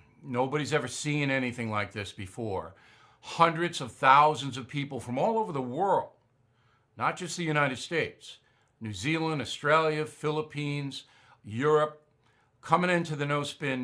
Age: 50-69